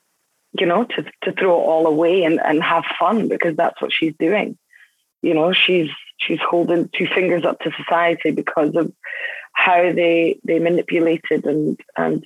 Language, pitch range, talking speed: English, 160-200 Hz, 170 wpm